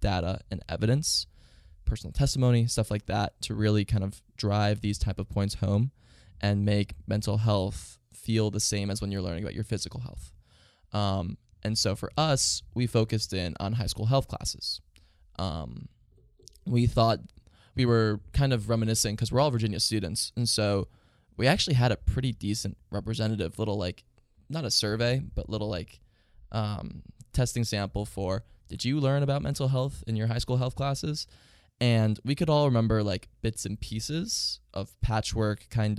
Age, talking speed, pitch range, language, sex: 20-39, 175 wpm, 95-115 Hz, English, male